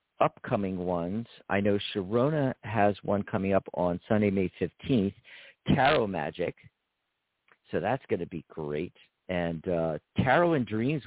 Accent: American